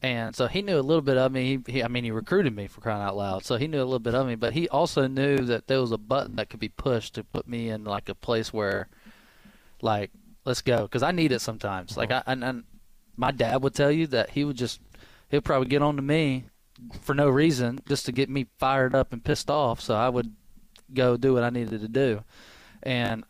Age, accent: 20-39, American